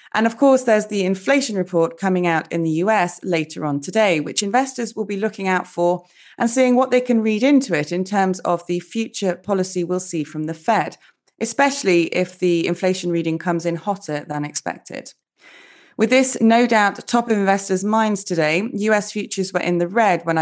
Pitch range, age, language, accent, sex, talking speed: 170-225 Hz, 30-49, English, British, female, 195 wpm